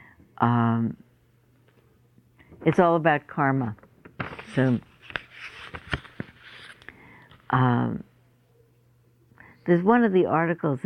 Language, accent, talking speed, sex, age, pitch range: English, American, 65 wpm, female, 60-79, 120-150 Hz